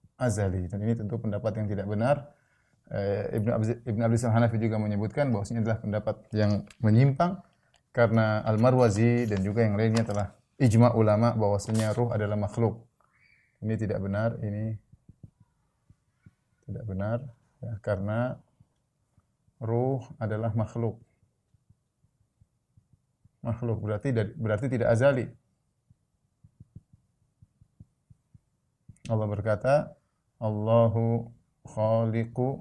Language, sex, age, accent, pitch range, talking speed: Indonesian, male, 30-49, native, 105-130 Hz, 95 wpm